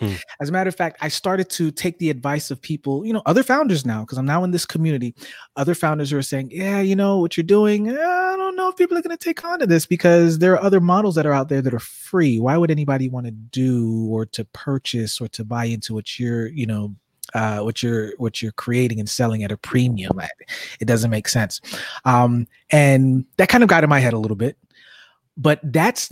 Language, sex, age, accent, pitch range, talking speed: English, male, 30-49, American, 130-185 Hz, 240 wpm